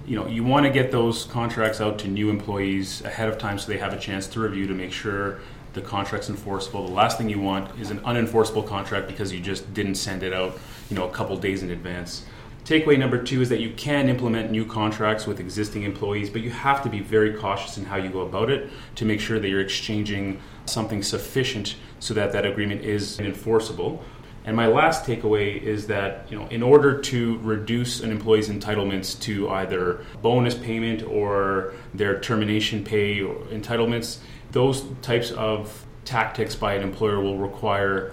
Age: 30-49